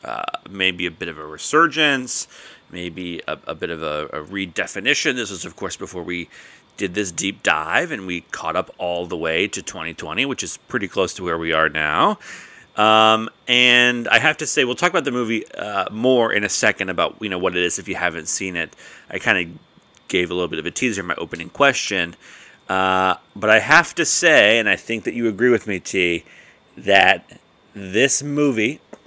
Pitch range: 95-125 Hz